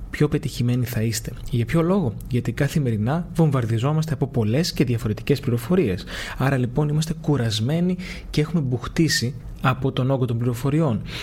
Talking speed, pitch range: 145 wpm, 125-170 Hz